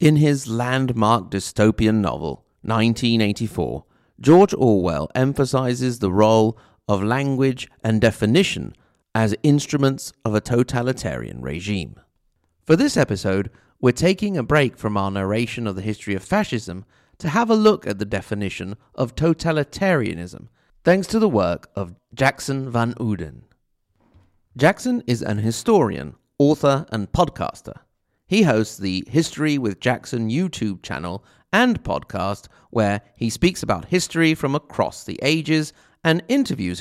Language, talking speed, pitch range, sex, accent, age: English, 130 wpm, 105-155 Hz, male, British, 40-59